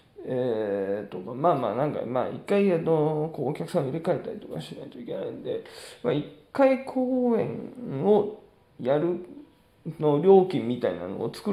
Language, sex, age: Japanese, male, 20-39